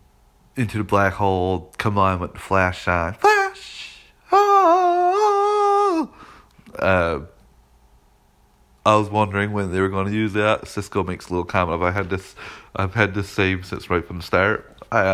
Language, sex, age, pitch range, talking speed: English, male, 20-39, 90-120 Hz, 165 wpm